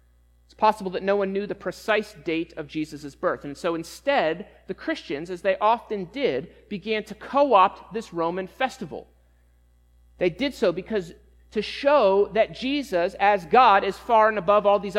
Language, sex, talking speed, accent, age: English, male, 170 wpm, American, 30-49